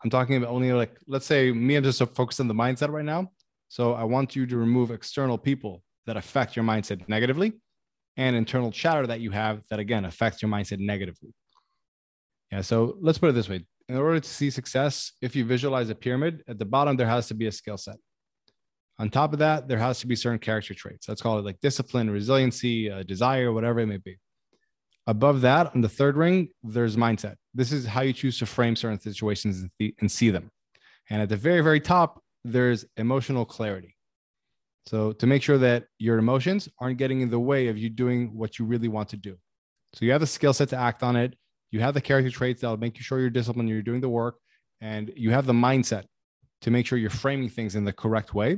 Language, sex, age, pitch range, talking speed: English, male, 20-39, 110-135 Hz, 225 wpm